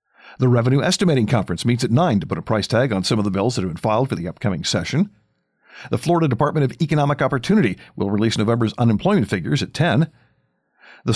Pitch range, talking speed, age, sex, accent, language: 105-155 Hz, 210 wpm, 50-69, male, American, English